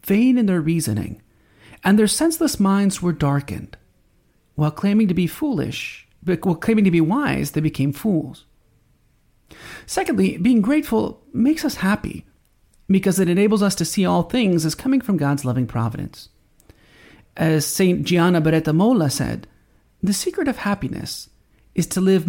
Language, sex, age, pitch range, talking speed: English, male, 40-59, 145-215 Hz, 150 wpm